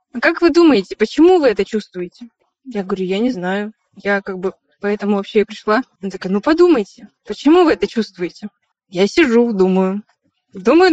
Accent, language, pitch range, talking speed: native, Russian, 210-290 Hz, 175 wpm